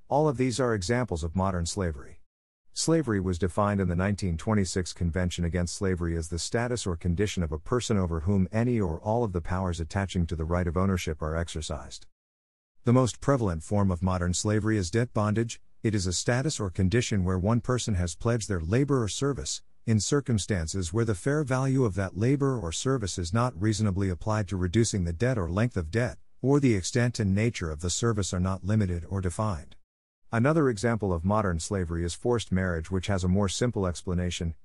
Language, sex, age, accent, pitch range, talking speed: English, male, 50-69, American, 90-115 Hz, 200 wpm